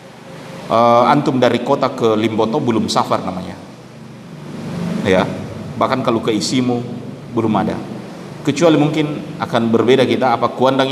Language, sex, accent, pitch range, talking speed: Indonesian, male, native, 105-135 Hz, 120 wpm